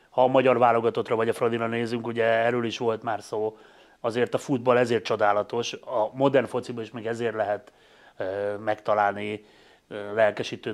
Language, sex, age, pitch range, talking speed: Hungarian, male, 30-49, 110-125 Hz, 155 wpm